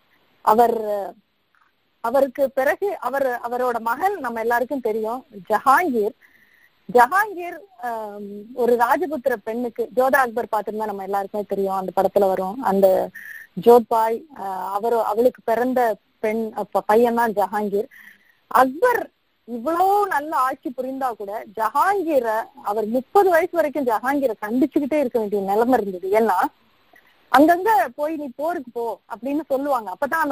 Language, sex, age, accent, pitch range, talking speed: Tamil, female, 20-39, native, 215-275 Hz, 110 wpm